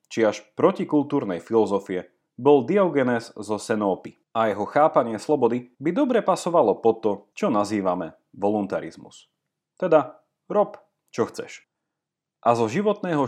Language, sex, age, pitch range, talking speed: Slovak, male, 30-49, 115-165 Hz, 120 wpm